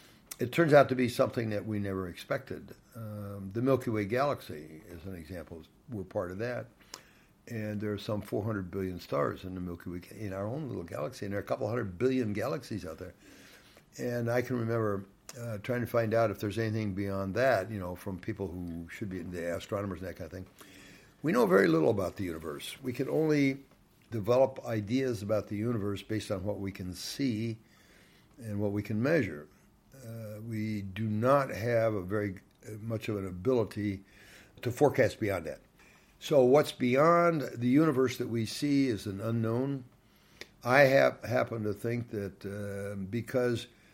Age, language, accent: 60-79, English, American